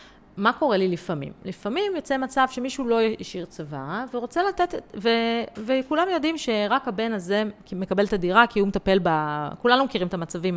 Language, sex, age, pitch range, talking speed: Hebrew, female, 30-49, 180-245 Hz, 175 wpm